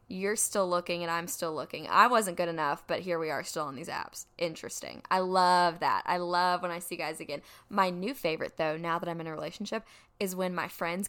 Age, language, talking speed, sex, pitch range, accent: 10-29, English, 240 wpm, female, 175-205 Hz, American